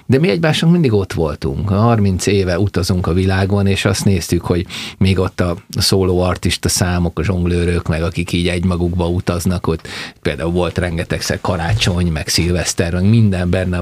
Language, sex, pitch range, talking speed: Hungarian, male, 90-105 Hz, 160 wpm